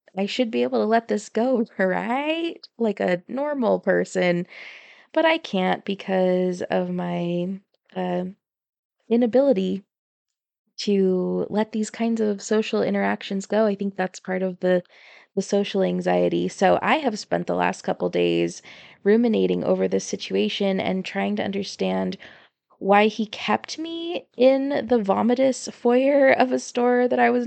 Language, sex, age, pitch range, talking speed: English, female, 20-39, 185-245 Hz, 150 wpm